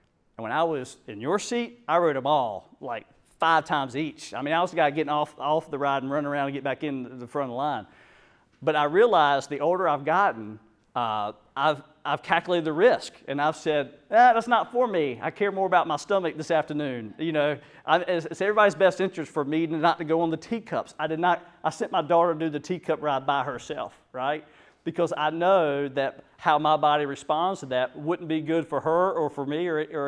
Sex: male